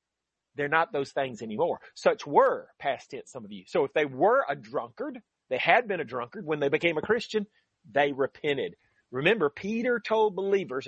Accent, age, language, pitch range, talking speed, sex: American, 40-59, English, 145-225 Hz, 190 wpm, male